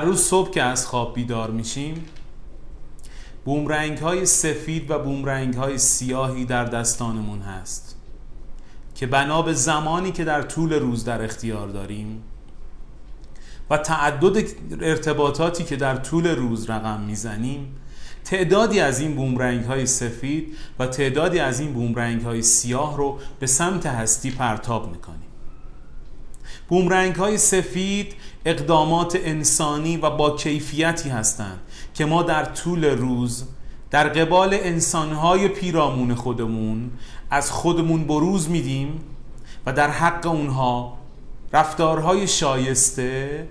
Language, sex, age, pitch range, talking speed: Persian, male, 30-49, 120-160 Hz, 115 wpm